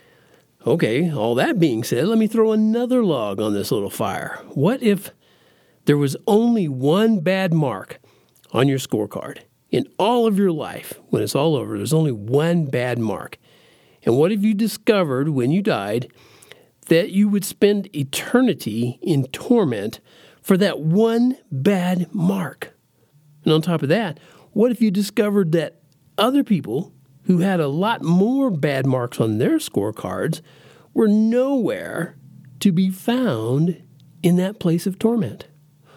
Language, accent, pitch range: English, American, 145-225 Hz